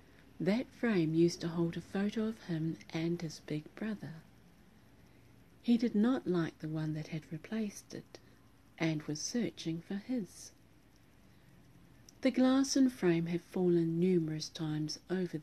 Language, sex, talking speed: English, female, 145 wpm